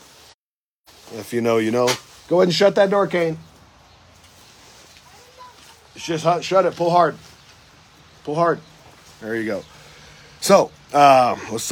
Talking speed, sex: 140 wpm, male